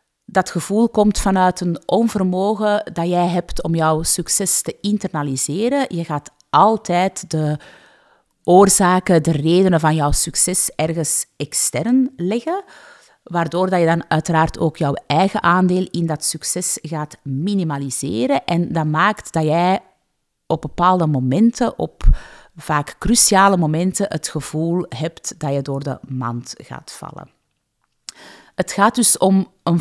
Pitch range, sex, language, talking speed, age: 160-205 Hz, female, Dutch, 135 wpm, 30-49